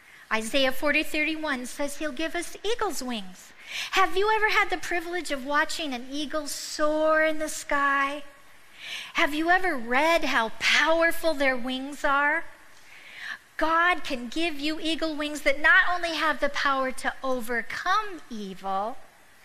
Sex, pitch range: female, 245-320 Hz